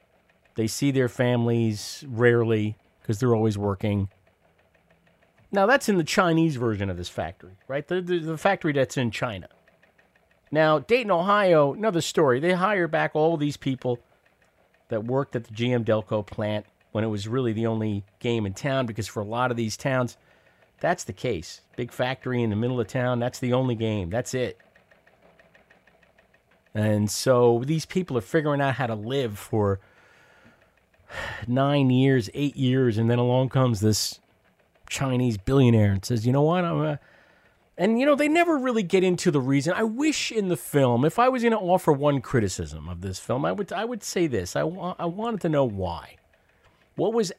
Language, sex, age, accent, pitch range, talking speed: English, male, 40-59, American, 110-160 Hz, 180 wpm